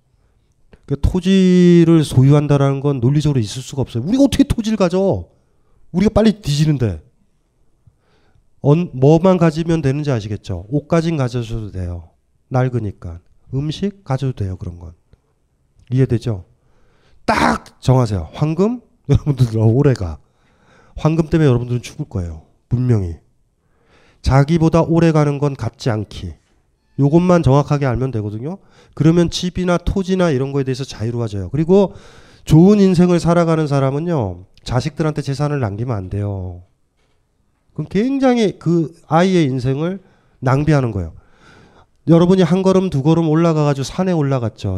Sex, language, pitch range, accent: male, Korean, 115-165 Hz, native